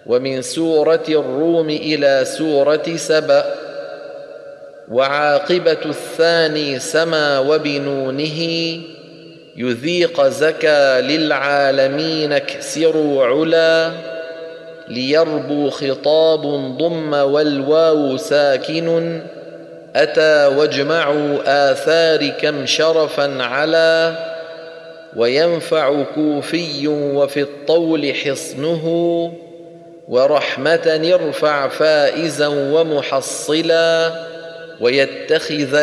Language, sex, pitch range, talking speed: Arabic, male, 140-165 Hz, 60 wpm